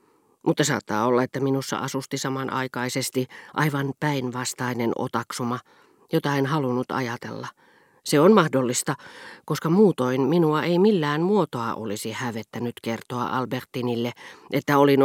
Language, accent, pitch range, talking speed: Finnish, native, 125-155 Hz, 115 wpm